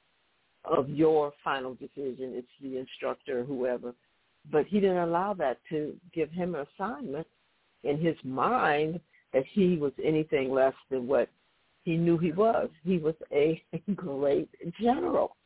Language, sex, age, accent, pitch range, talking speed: English, female, 60-79, American, 135-165 Hz, 150 wpm